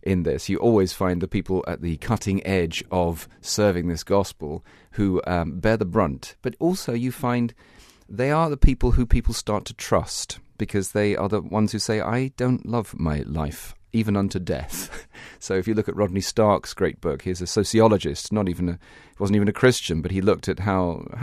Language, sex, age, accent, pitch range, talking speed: English, male, 40-59, British, 90-110 Hz, 205 wpm